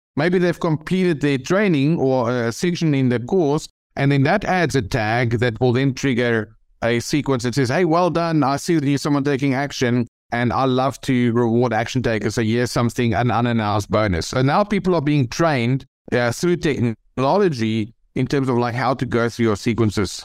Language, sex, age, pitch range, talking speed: English, male, 50-69, 120-160 Hz, 195 wpm